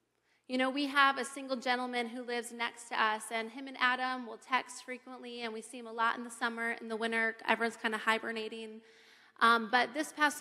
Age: 30-49